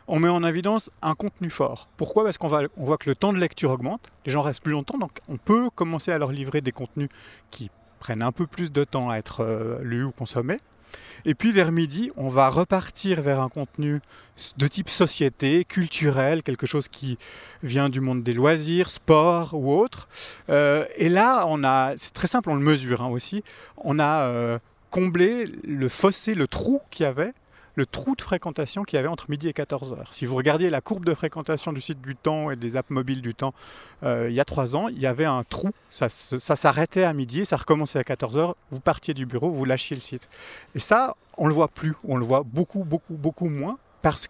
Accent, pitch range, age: French, 130-170 Hz, 40-59